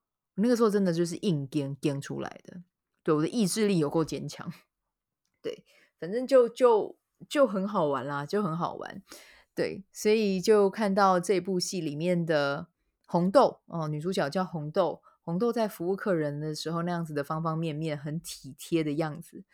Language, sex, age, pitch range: Chinese, female, 20-39, 150-190 Hz